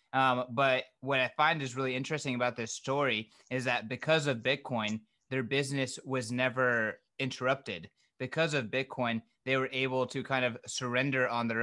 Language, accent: English, American